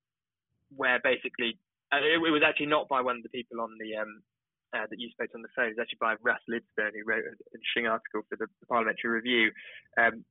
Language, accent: English, British